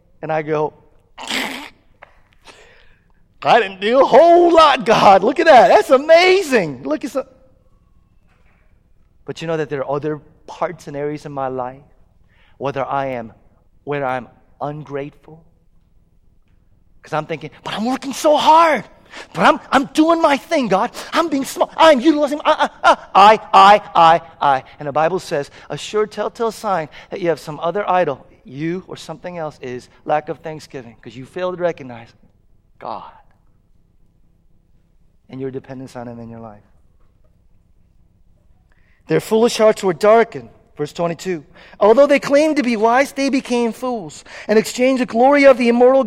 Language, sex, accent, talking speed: English, male, American, 160 wpm